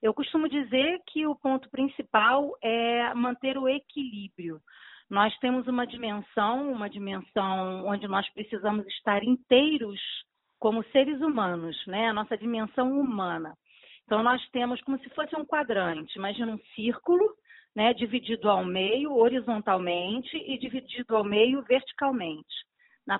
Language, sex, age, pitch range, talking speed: Portuguese, female, 40-59, 205-270 Hz, 130 wpm